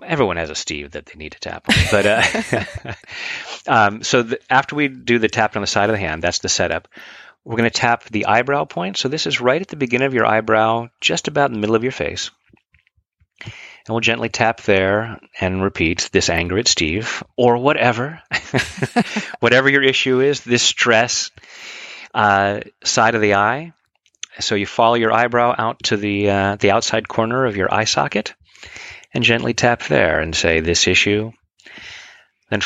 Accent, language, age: American, English, 30-49